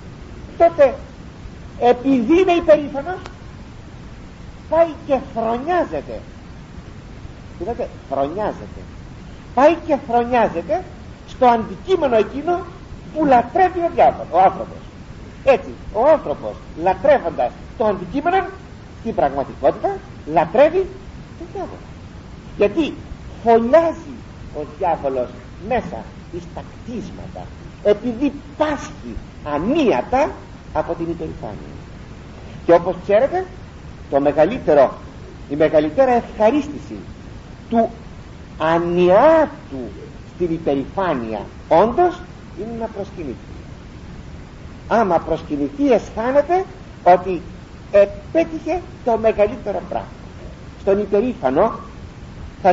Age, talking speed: 50-69, 85 wpm